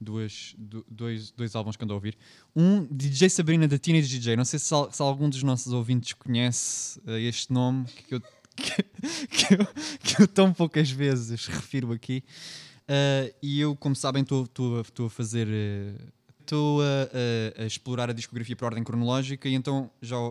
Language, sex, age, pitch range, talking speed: Portuguese, male, 20-39, 115-140 Hz, 175 wpm